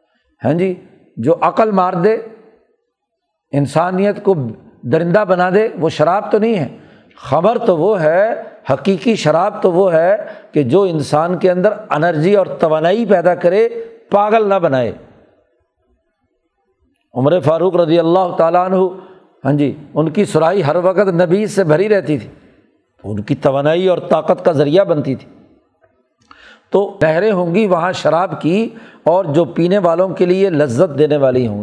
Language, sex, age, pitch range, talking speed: Urdu, male, 60-79, 150-190 Hz, 155 wpm